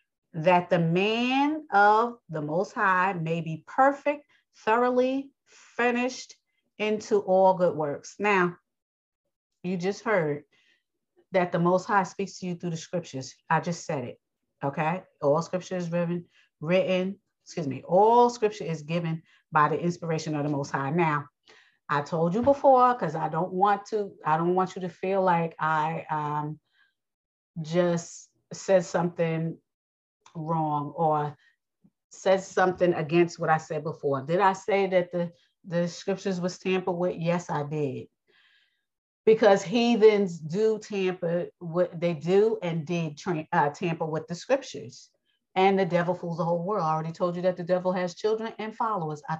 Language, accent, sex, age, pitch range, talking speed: English, American, female, 40-59, 165-200 Hz, 160 wpm